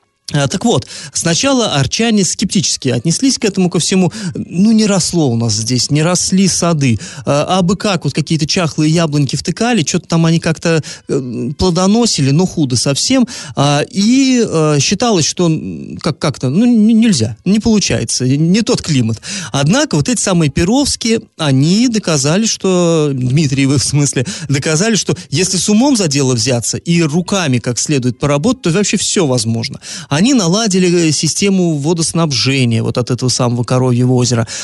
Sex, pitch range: male, 135-185 Hz